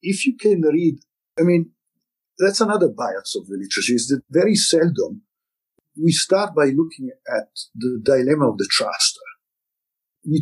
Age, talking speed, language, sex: 50-69, 155 wpm, English, male